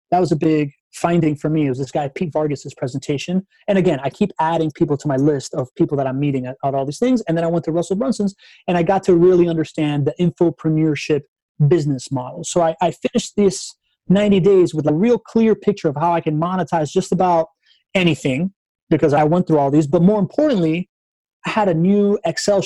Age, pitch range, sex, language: 30-49, 145-180 Hz, male, English